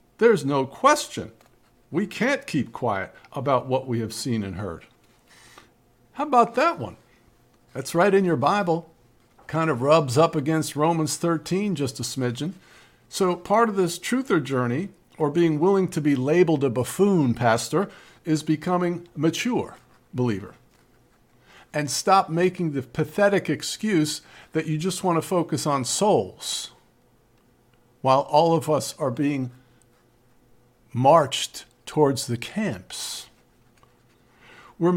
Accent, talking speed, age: American, 135 wpm, 50-69